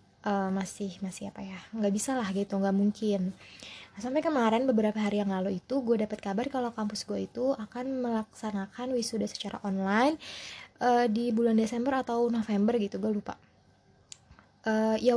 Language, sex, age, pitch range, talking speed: Indonesian, female, 20-39, 205-245 Hz, 160 wpm